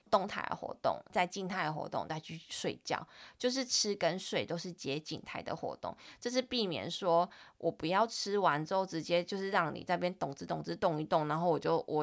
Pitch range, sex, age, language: 165-205 Hz, female, 20-39, Chinese